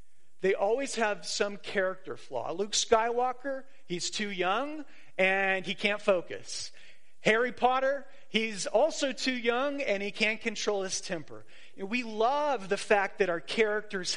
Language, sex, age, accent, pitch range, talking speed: English, male, 40-59, American, 175-235 Hz, 145 wpm